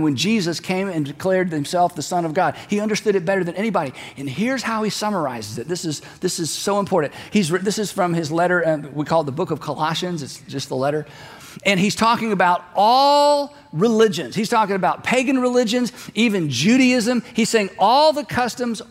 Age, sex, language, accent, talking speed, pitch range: 50-69, male, English, American, 195 wpm, 165-230 Hz